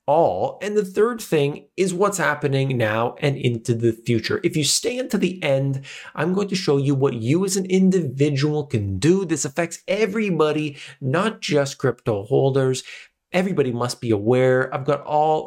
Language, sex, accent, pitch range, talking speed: English, male, American, 120-155 Hz, 175 wpm